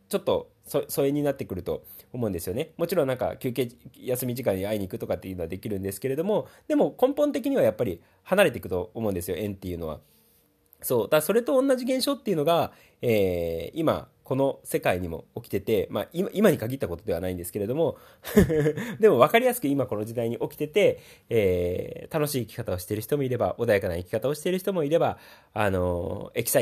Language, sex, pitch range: Japanese, male, 105-170 Hz